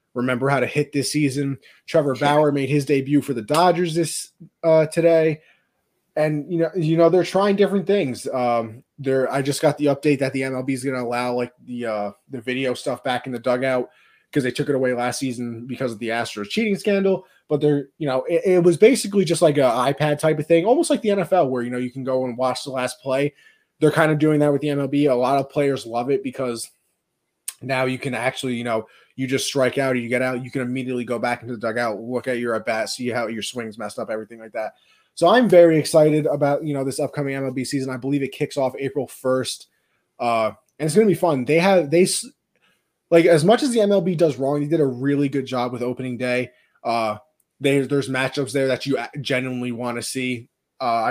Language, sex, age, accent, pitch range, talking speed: English, male, 20-39, American, 125-155 Hz, 235 wpm